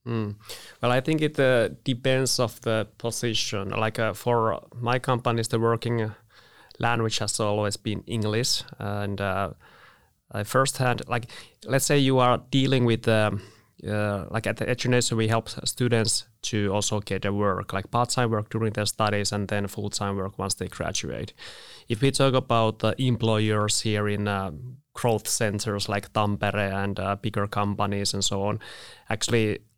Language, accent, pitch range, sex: Finnish, native, 105-120 Hz, male